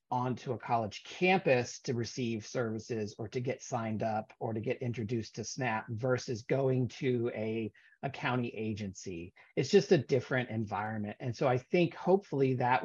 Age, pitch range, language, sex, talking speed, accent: 40-59, 115-140 Hz, English, male, 170 wpm, American